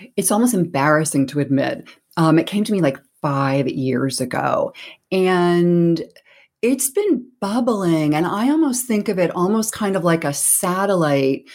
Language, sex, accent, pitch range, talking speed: English, female, American, 155-200 Hz, 155 wpm